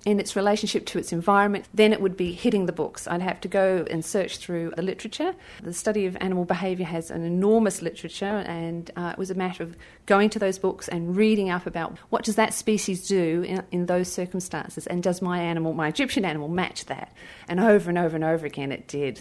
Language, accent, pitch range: English, Australian, 175-215 Hz